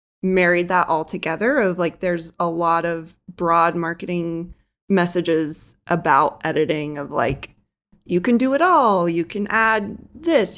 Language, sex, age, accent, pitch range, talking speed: English, female, 20-39, American, 170-205 Hz, 145 wpm